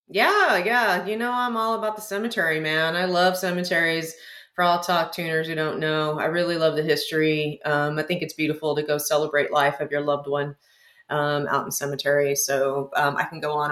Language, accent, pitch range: English, American, 145-215 Hz